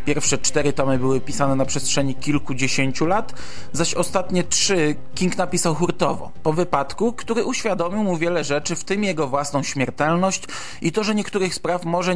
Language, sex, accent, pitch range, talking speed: Polish, male, native, 135-175 Hz, 165 wpm